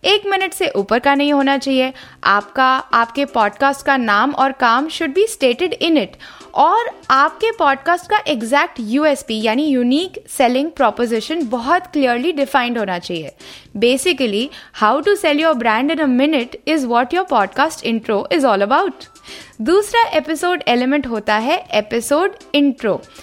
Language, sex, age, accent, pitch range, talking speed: Hindi, female, 20-39, native, 235-330 Hz, 135 wpm